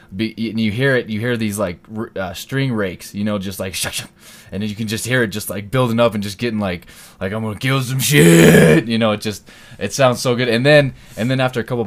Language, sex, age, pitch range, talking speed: English, male, 20-39, 100-120 Hz, 265 wpm